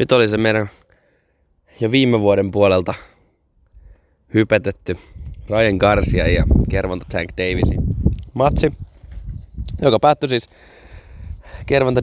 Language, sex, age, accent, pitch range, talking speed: Finnish, male, 20-39, native, 90-115 Hz, 100 wpm